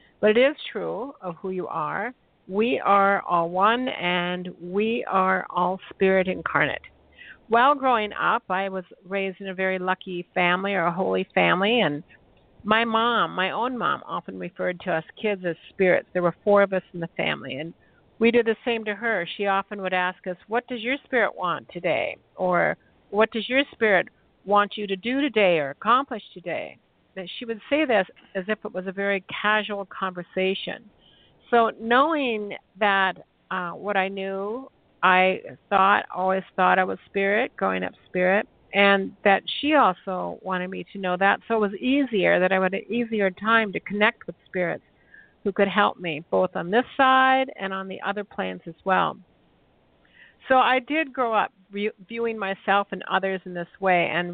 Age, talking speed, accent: 60-79, 185 wpm, American